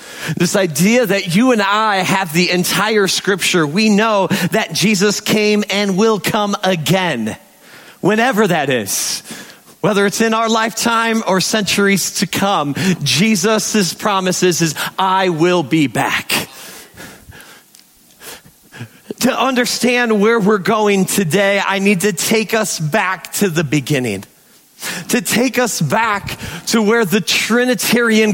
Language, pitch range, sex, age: English, 190-230 Hz, male, 40-59